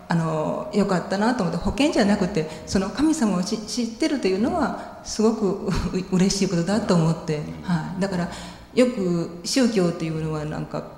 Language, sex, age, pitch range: Japanese, female, 40-59, 175-230 Hz